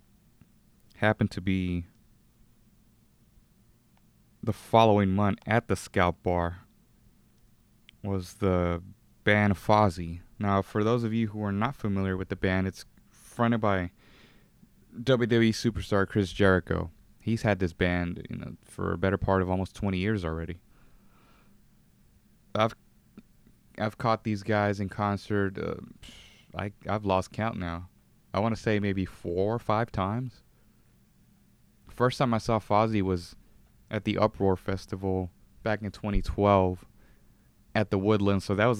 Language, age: English, 20-39